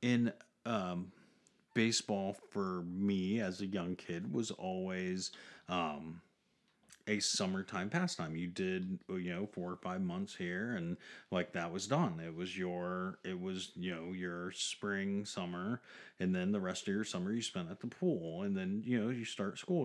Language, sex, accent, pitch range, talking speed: English, male, American, 90-115 Hz, 175 wpm